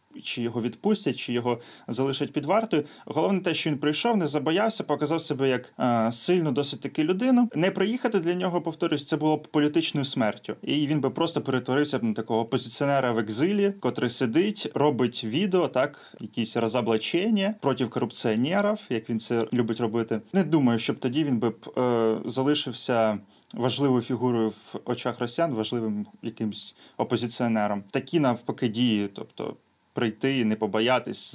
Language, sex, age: Ukrainian, male, 20-39